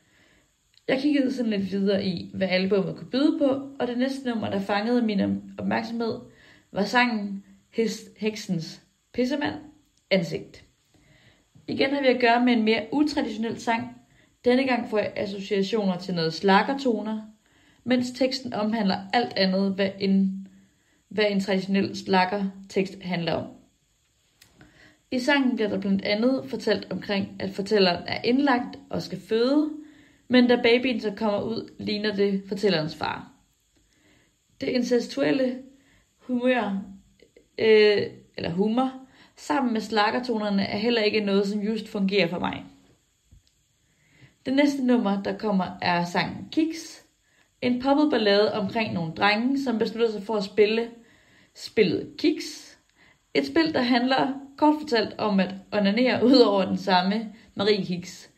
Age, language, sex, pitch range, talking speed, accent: 30-49, Danish, female, 195-250 Hz, 140 wpm, native